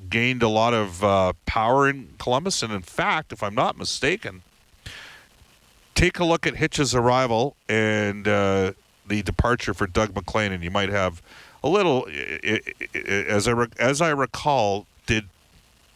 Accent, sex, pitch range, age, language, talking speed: American, male, 100-125 Hz, 50-69, English, 145 wpm